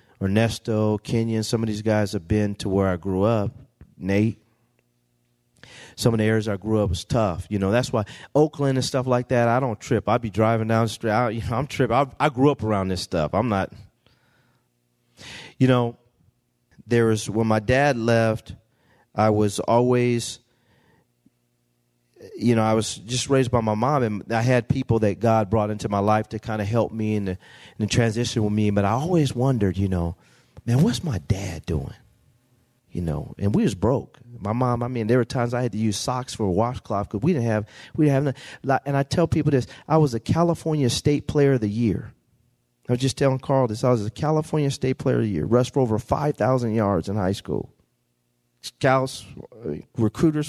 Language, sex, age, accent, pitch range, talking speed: English, male, 40-59, American, 105-130 Hz, 205 wpm